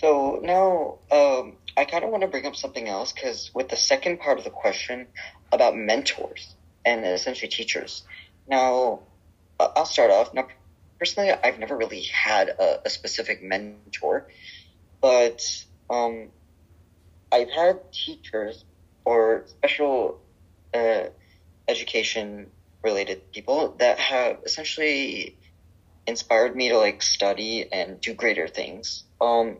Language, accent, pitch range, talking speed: English, American, 90-150 Hz, 130 wpm